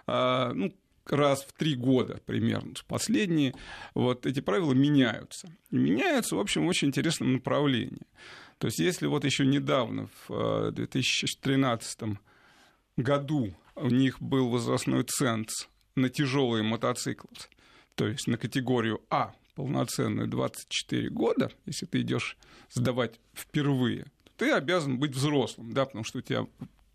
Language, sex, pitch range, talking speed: Russian, male, 125-145 Hz, 130 wpm